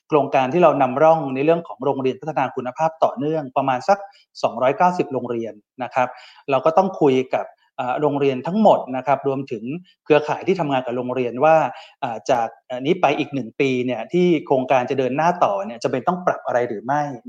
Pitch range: 125-160 Hz